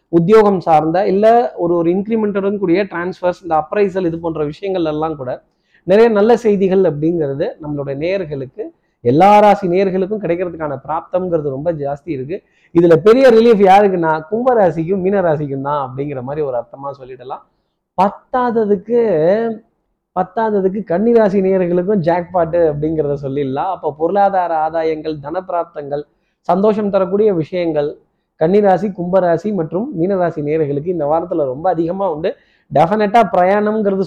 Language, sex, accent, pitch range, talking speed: Tamil, male, native, 155-200 Hz, 120 wpm